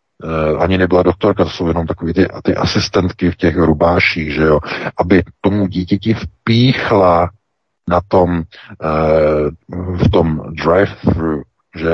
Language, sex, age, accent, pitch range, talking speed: Czech, male, 50-69, native, 80-105 Hz, 125 wpm